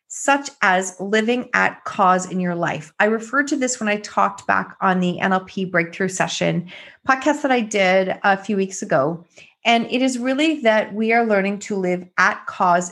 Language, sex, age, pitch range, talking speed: English, female, 30-49, 185-240 Hz, 190 wpm